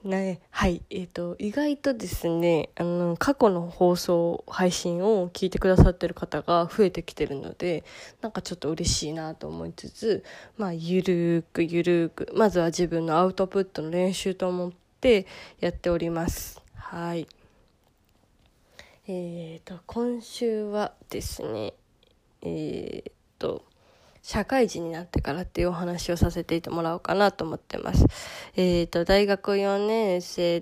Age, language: 20-39, Japanese